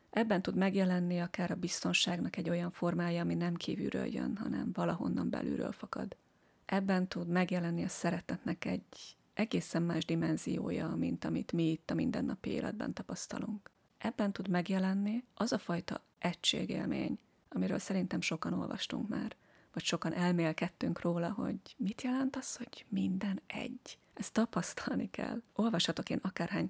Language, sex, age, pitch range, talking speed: Hungarian, female, 30-49, 170-205 Hz, 140 wpm